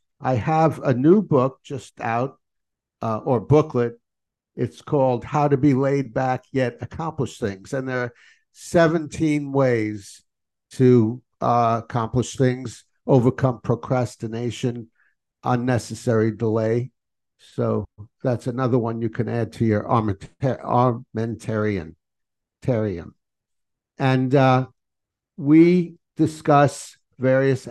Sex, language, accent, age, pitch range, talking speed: male, English, American, 60-79, 115-135 Hz, 105 wpm